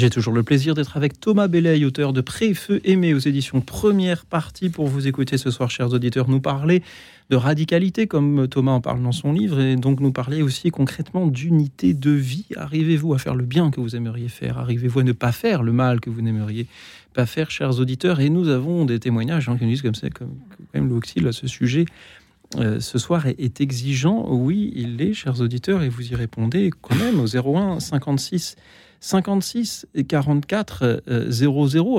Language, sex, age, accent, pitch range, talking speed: French, male, 40-59, French, 120-150 Hz, 190 wpm